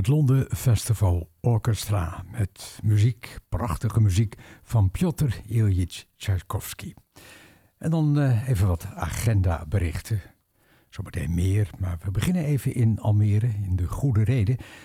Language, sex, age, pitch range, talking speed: Dutch, male, 60-79, 95-125 Hz, 120 wpm